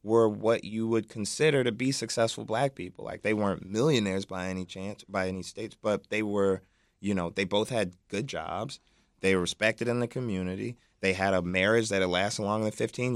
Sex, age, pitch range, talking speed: male, 30-49, 95-115 Hz, 210 wpm